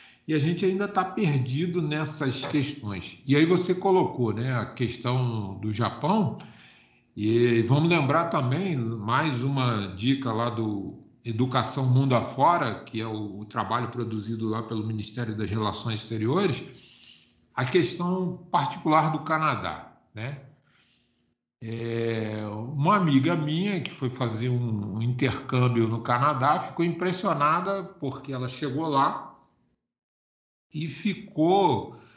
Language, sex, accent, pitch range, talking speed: Portuguese, male, Brazilian, 120-170 Hz, 120 wpm